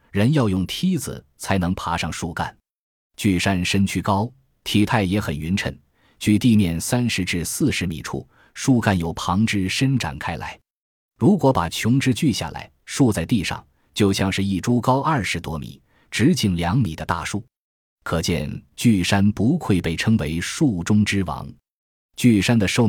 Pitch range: 85-115 Hz